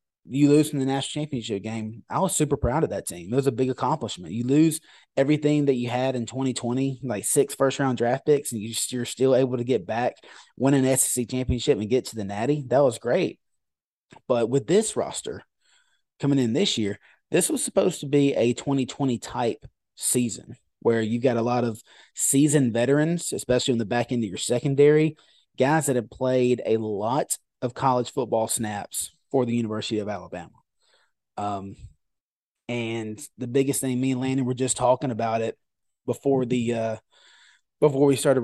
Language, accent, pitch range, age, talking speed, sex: English, American, 115-140 Hz, 30-49, 185 wpm, male